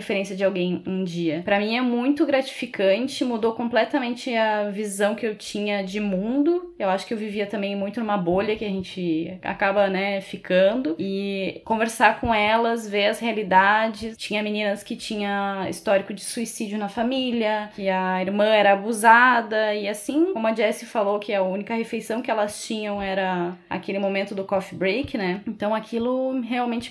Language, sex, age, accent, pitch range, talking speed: Portuguese, female, 20-39, Brazilian, 195-230 Hz, 175 wpm